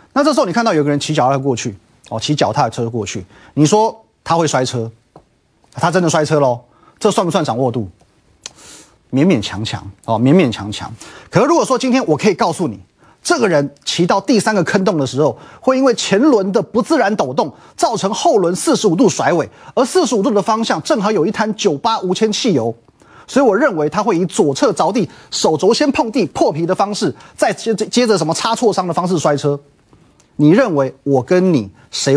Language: Chinese